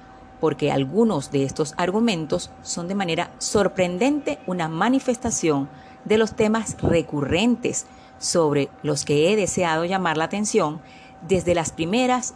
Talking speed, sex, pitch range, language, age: 125 wpm, female, 150-225 Hz, Spanish, 40-59